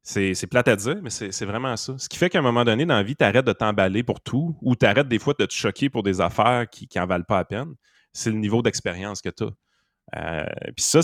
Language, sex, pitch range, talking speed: French, male, 95-125 Hz, 290 wpm